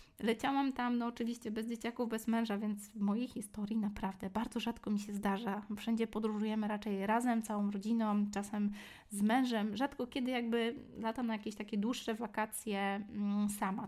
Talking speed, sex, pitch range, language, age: 160 wpm, female, 205-230 Hz, Polish, 20-39